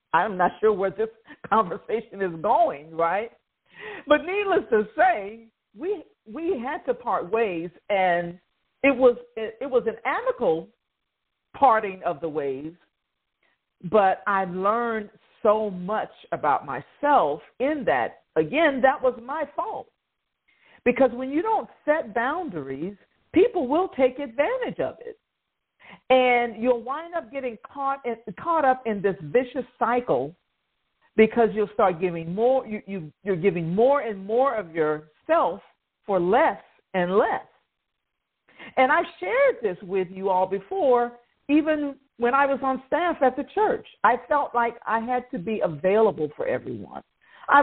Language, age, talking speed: English, 50-69, 145 wpm